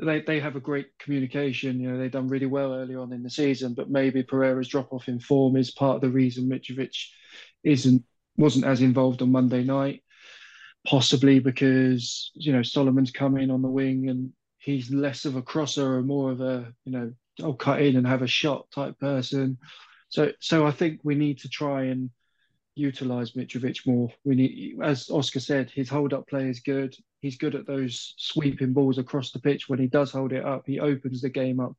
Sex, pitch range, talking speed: male, 130-140 Hz, 210 wpm